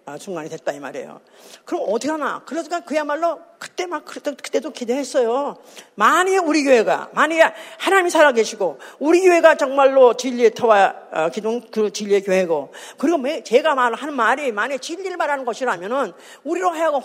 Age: 40-59